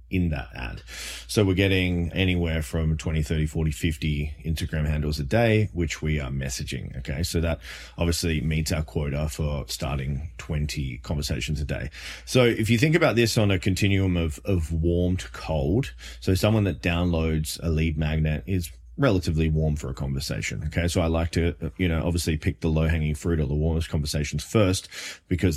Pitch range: 75-95 Hz